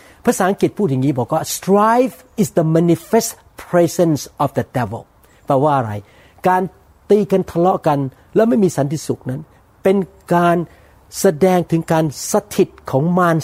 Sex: male